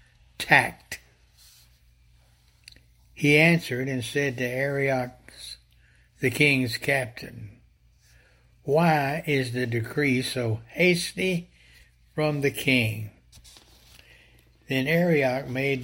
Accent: American